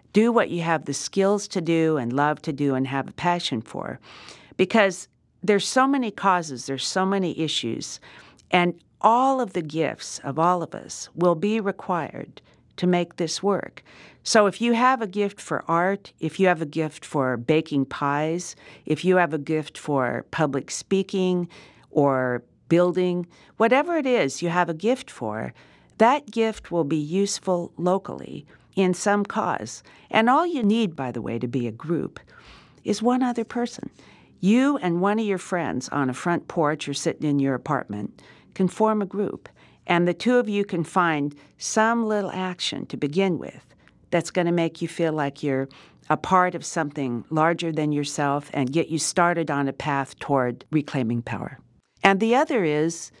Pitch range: 145-195 Hz